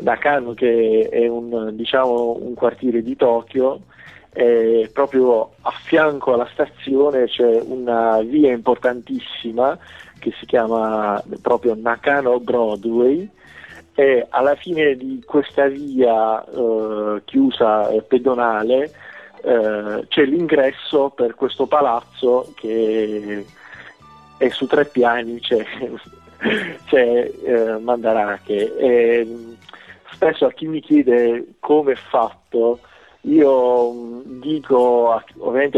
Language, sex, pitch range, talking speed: Italian, male, 115-145 Hz, 95 wpm